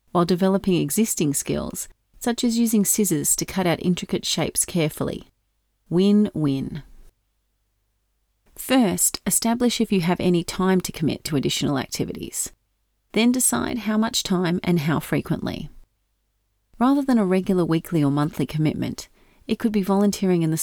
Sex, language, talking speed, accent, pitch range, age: female, English, 145 wpm, Australian, 145-195 Hz, 30-49